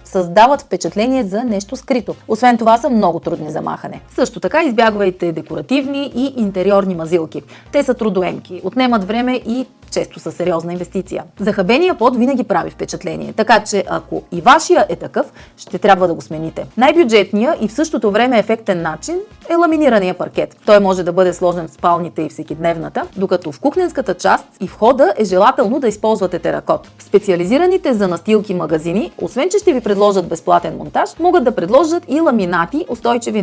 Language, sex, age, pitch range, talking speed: Bulgarian, female, 30-49, 180-250 Hz, 165 wpm